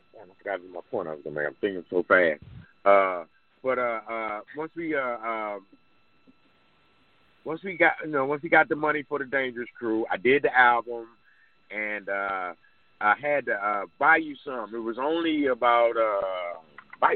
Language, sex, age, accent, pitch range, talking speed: English, male, 30-49, American, 115-155 Hz, 155 wpm